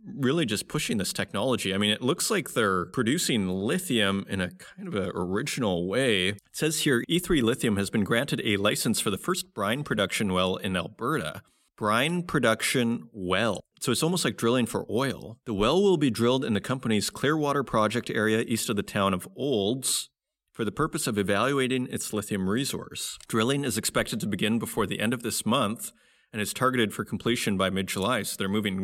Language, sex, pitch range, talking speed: English, male, 100-130 Hz, 195 wpm